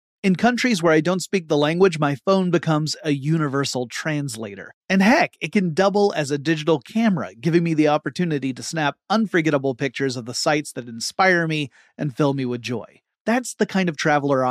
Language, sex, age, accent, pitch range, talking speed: English, male, 30-49, American, 140-195 Hz, 195 wpm